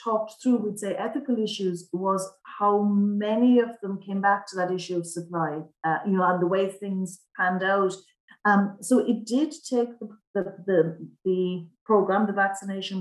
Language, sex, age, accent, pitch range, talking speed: English, female, 40-59, Irish, 190-225 Hz, 180 wpm